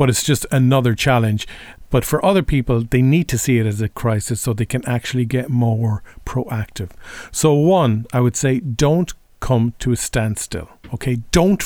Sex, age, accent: male, 40-59, Irish